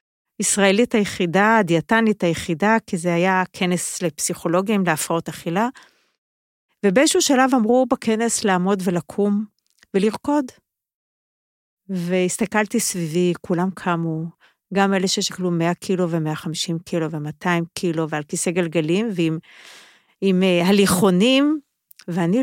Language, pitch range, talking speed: Hebrew, 170-220 Hz, 100 wpm